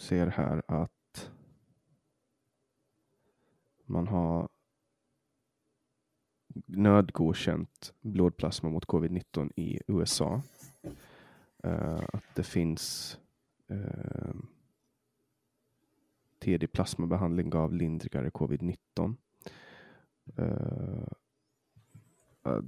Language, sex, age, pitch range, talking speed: Swedish, male, 20-39, 80-95 Hz, 60 wpm